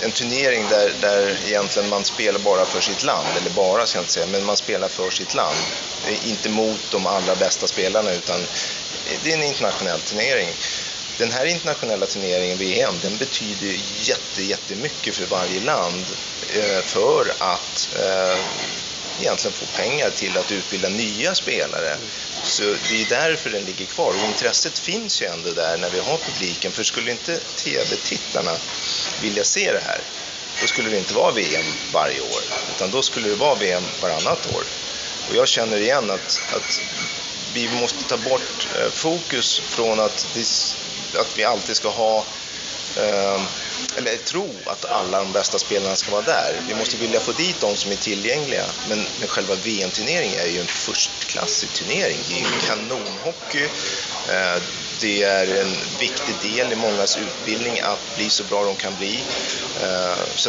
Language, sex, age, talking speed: English, male, 30-49, 165 wpm